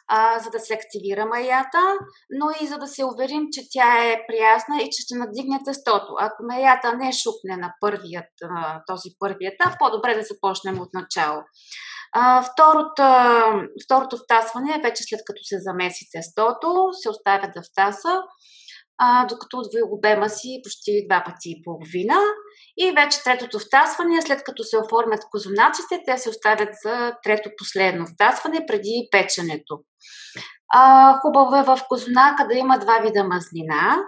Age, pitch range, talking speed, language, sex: 20-39, 210-285 Hz, 150 wpm, Bulgarian, female